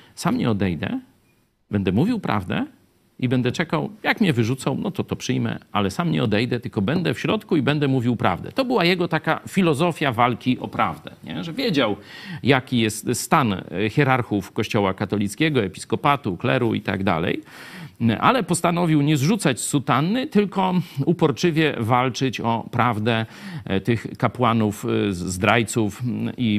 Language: Polish